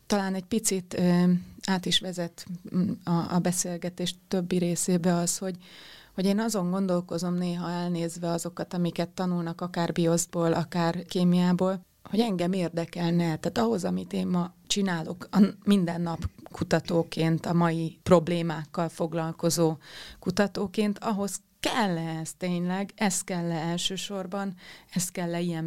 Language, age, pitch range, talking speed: Hungarian, 30-49, 170-185 Hz, 130 wpm